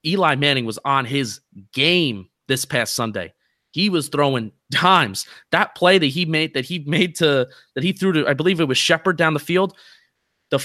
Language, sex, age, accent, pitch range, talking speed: English, male, 20-39, American, 135-180 Hz, 195 wpm